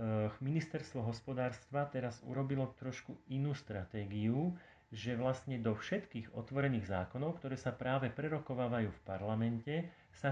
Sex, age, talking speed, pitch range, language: male, 40-59, 115 wpm, 115-135 Hz, Slovak